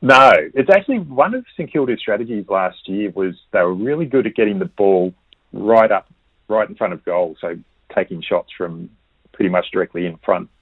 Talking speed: 200 wpm